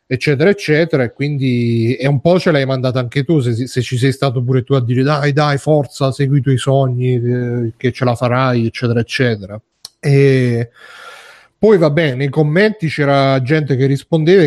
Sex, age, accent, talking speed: male, 30-49, native, 185 wpm